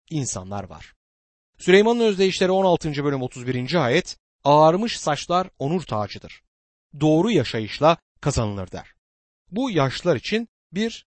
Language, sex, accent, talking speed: Turkish, male, native, 110 wpm